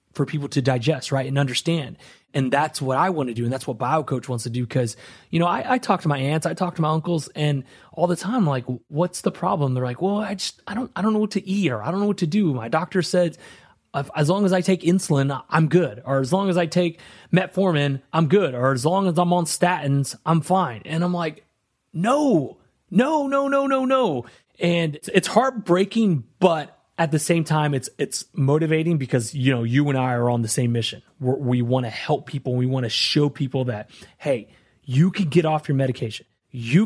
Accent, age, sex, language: American, 30-49, male, English